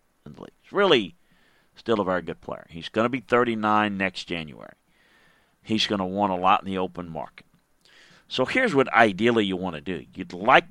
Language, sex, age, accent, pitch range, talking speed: English, male, 40-59, American, 90-115 Hz, 200 wpm